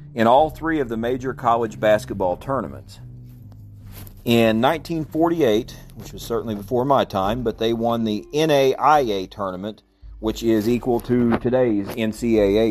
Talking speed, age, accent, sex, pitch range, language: 135 wpm, 40-59, American, male, 100-120 Hz, English